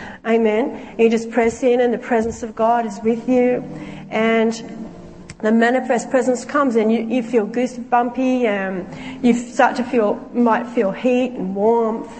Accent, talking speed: Australian, 165 wpm